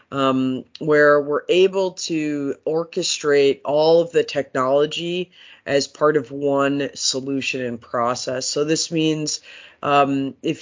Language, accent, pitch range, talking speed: English, American, 140-160 Hz, 125 wpm